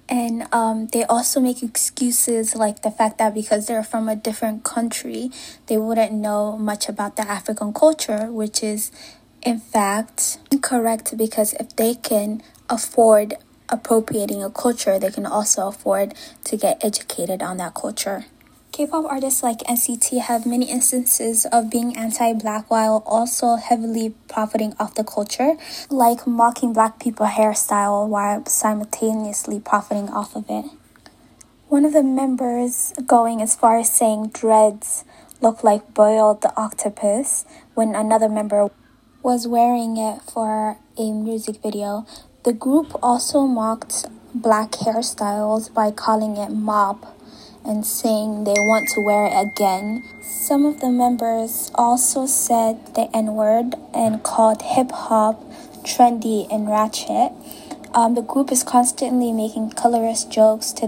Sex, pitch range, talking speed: female, 215-245 Hz, 140 wpm